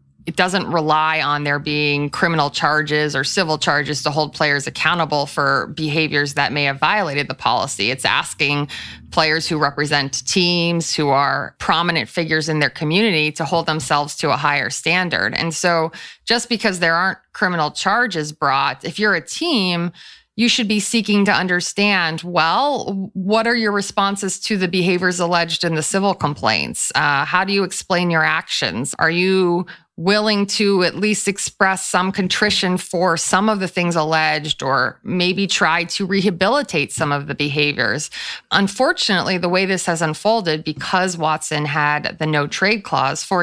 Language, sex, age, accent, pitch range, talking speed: English, female, 30-49, American, 155-190 Hz, 165 wpm